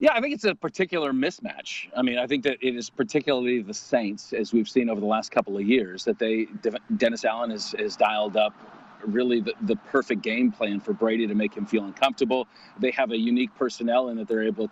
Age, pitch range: 40-59, 115-195 Hz